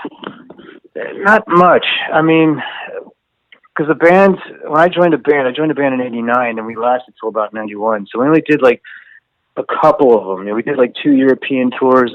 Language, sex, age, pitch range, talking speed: English, male, 30-49, 105-125 Hz, 195 wpm